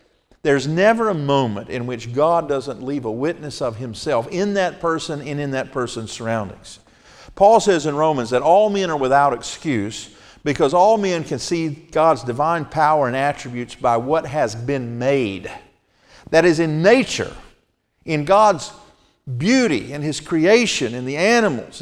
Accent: American